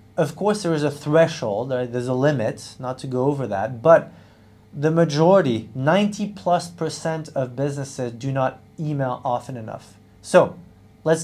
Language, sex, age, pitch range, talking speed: English, male, 30-49, 110-165 Hz, 155 wpm